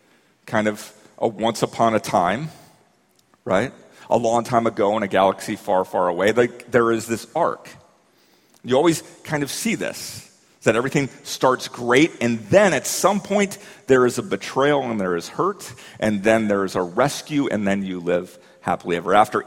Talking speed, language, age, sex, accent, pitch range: 180 wpm, English, 40-59, male, American, 95-125 Hz